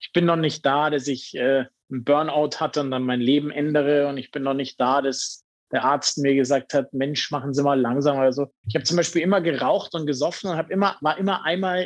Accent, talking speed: German, 245 wpm